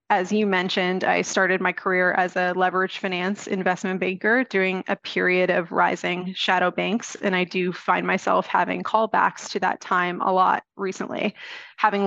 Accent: American